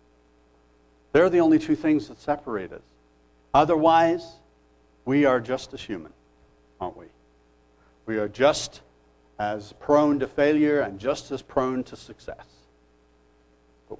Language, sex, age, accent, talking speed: English, male, 60-79, American, 130 wpm